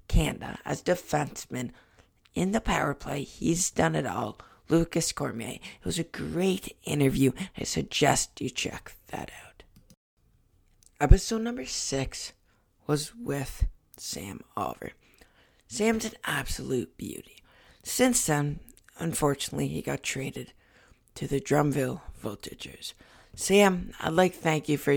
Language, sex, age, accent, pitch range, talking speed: English, female, 50-69, American, 125-165 Hz, 120 wpm